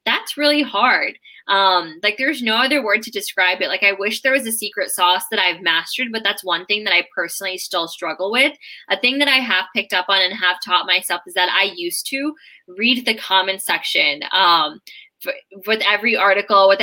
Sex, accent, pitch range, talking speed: female, American, 185-225 Hz, 205 wpm